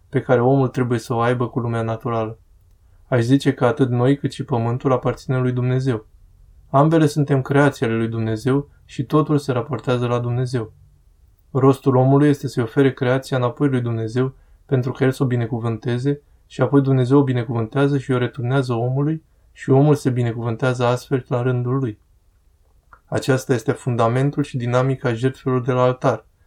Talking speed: 165 wpm